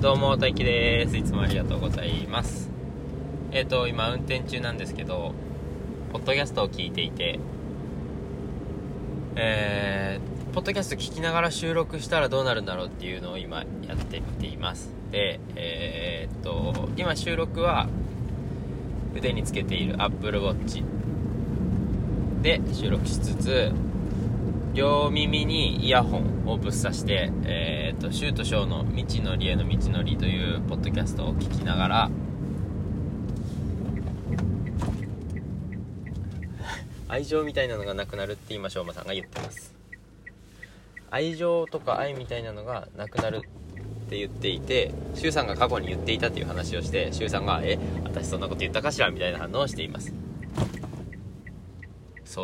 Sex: male